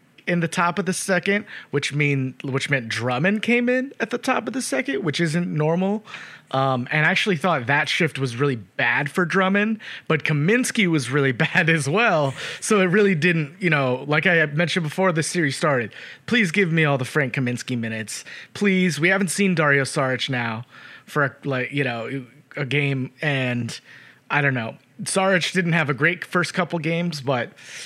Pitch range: 135-180 Hz